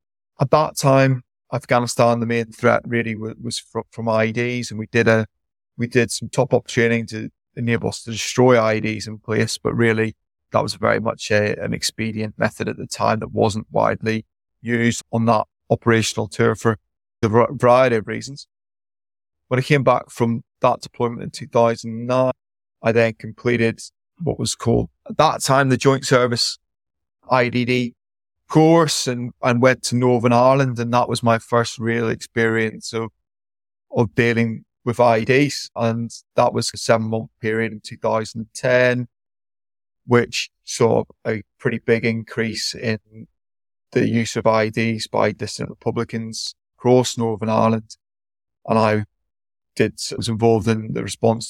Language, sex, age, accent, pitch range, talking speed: English, male, 30-49, British, 110-120 Hz, 150 wpm